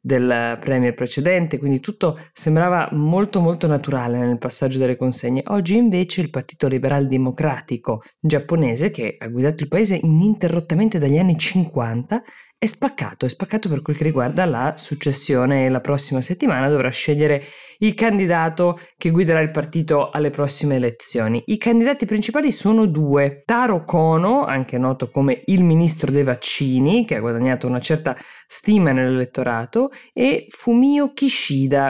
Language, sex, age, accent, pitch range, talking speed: Italian, female, 20-39, native, 130-180 Hz, 145 wpm